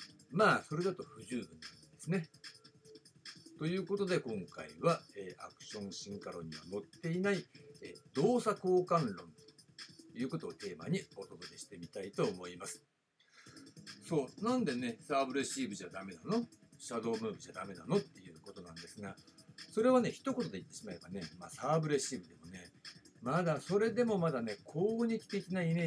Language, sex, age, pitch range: Japanese, male, 60-79, 145-205 Hz